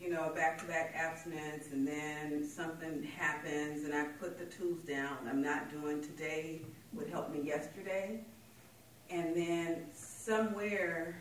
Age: 40-59